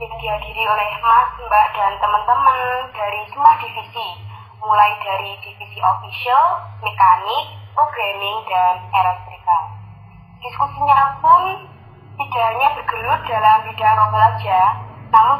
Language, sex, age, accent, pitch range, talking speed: Indonesian, female, 20-39, native, 210-275 Hz, 105 wpm